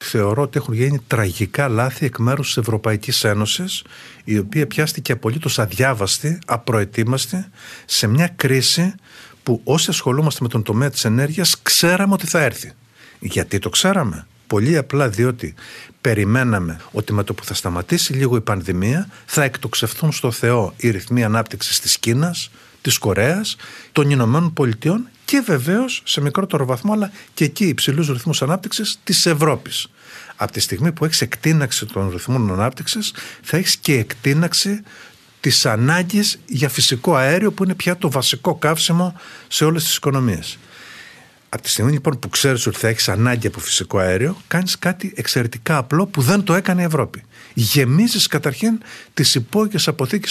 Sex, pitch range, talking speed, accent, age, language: male, 115-170 Hz, 155 wpm, native, 50-69, Greek